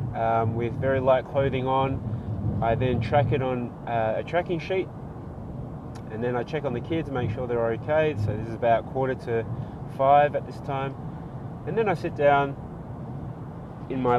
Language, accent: English, Australian